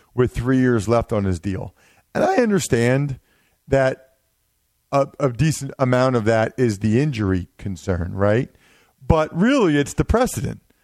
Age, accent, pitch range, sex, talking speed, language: 40-59, American, 120-155 Hz, male, 150 wpm, English